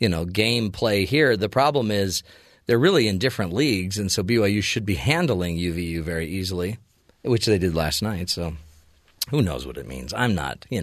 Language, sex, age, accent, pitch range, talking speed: English, male, 40-59, American, 100-150 Hz, 200 wpm